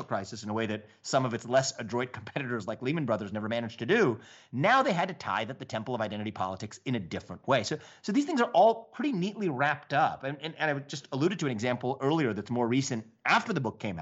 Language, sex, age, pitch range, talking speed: English, male, 30-49, 110-145 Hz, 255 wpm